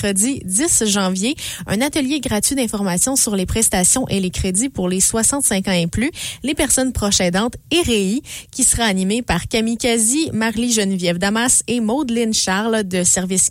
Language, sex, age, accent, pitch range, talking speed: English, female, 20-39, Canadian, 185-260 Hz, 170 wpm